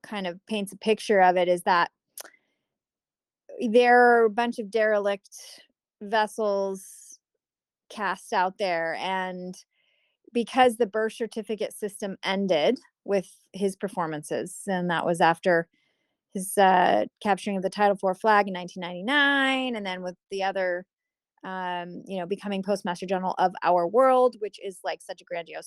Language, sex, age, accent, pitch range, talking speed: English, female, 20-39, American, 185-225 Hz, 145 wpm